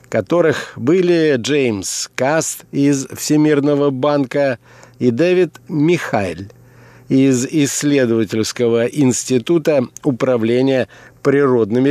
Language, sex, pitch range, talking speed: Russian, male, 120-150 Hz, 75 wpm